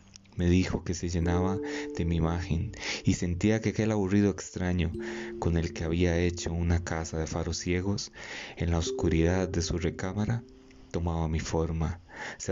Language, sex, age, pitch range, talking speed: Spanish, male, 30-49, 85-100 Hz, 165 wpm